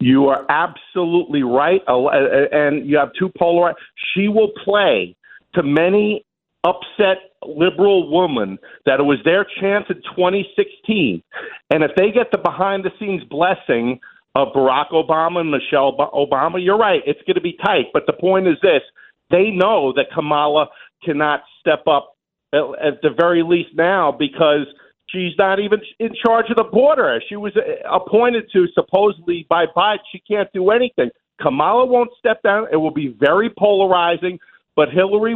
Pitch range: 160-205 Hz